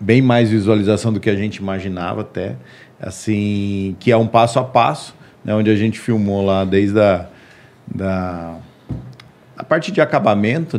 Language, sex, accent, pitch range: Portuguese, male, Brazilian, 100-125 Hz